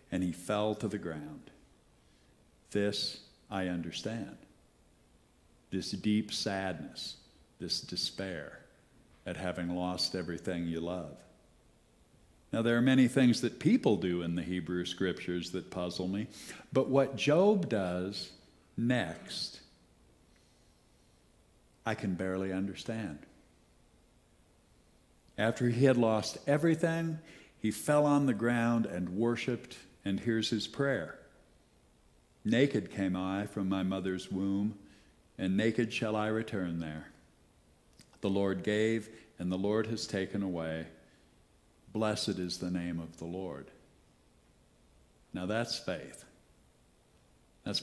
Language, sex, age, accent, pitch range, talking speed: English, male, 60-79, American, 85-110 Hz, 115 wpm